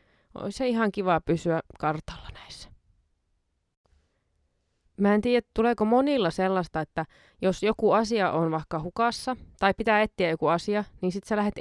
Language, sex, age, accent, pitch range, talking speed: Finnish, female, 20-39, native, 170-240 Hz, 145 wpm